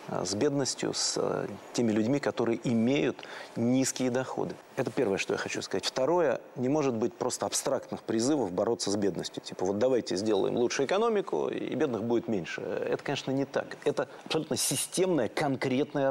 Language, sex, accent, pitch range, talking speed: Russian, male, native, 125-155 Hz, 160 wpm